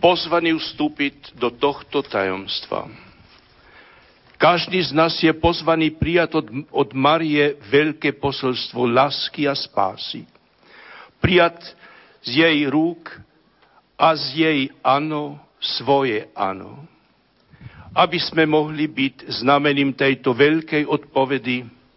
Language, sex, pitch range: Slovak, male, 135-160 Hz